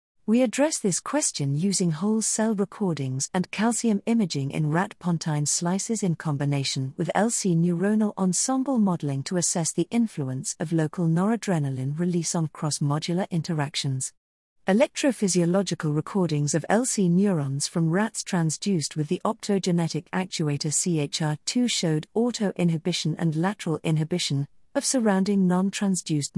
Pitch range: 155-215 Hz